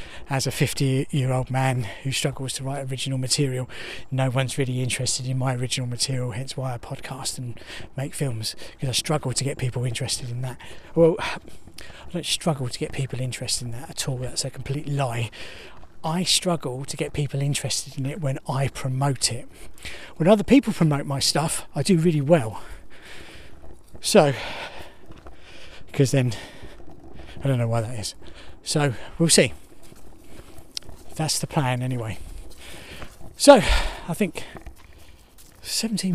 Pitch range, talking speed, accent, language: 125-170 Hz, 155 wpm, British, English